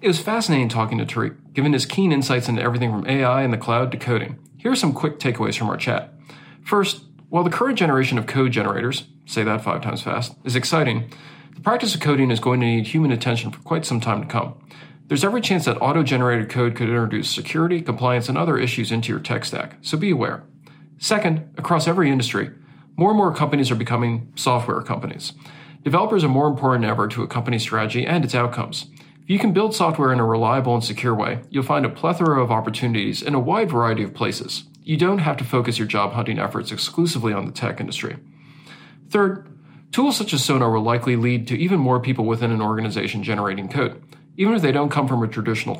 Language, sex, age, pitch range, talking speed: English, male, 40-59, 120-155 Hz, 215 wpm